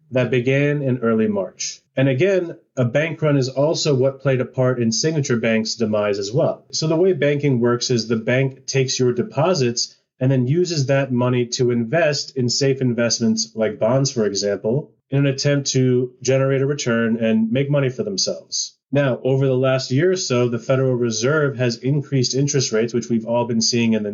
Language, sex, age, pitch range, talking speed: English, male, 30-49, 120-140 Hz, 200 wpm